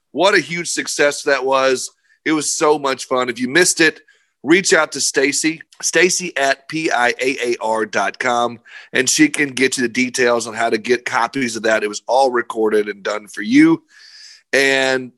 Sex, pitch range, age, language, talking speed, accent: male, 120-165 Hz, 30-49, English, 190 wpm, American